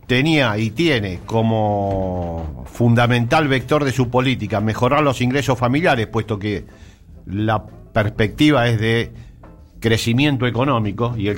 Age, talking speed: 50-69, 120 wpm